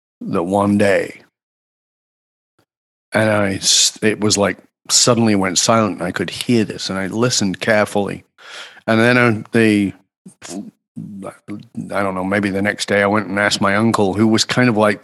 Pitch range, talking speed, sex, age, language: 100-130 Hz, 165 wpm, male, 40-59, English